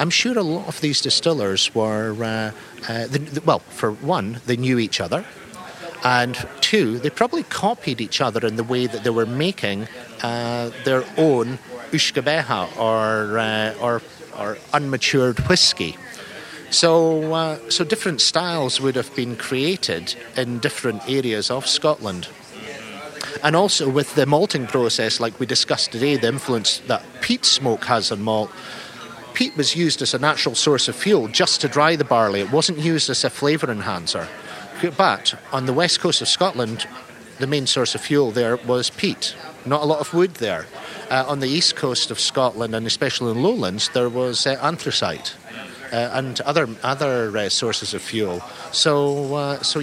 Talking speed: 170 wpm